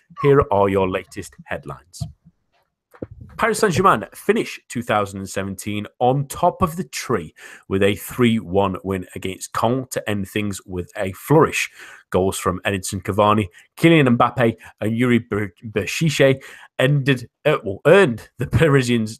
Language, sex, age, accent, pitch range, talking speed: English, male, 30-49, British, 95-125 Hz, 130 wpm